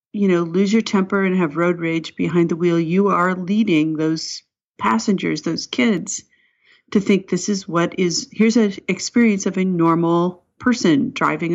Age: 40-59